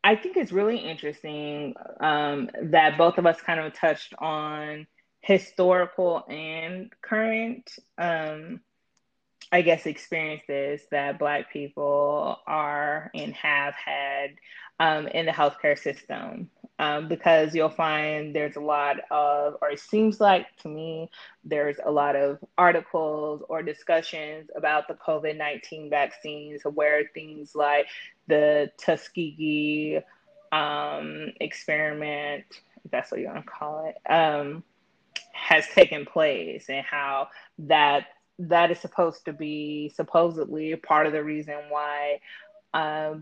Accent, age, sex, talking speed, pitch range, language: American, 20-39, female, 130 wpm, 145-165 Hz, English